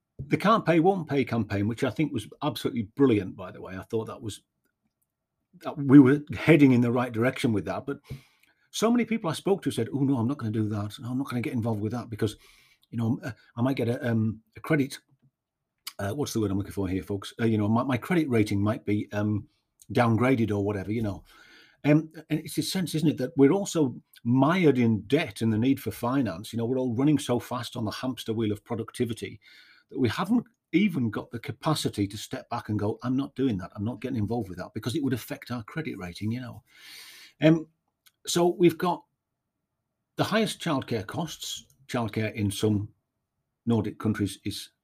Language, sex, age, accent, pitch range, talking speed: English, male, 40-59, British, 110-145 Hz, 220 wpm